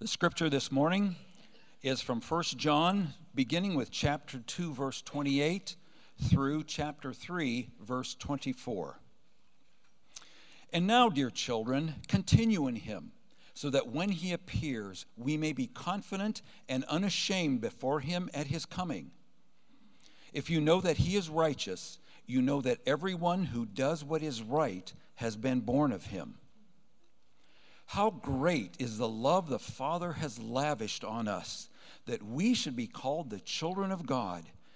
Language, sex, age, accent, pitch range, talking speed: English, male, 60-79, American, 130-175 Hz, 145 wpm